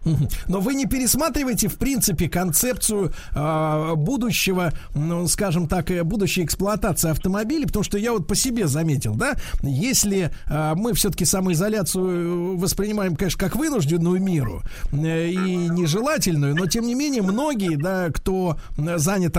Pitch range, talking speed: 155-200 Hz, 135 wpm